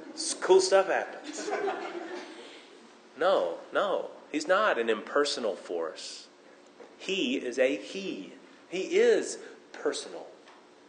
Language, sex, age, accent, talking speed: English, male, 30-49, American, 95 wpm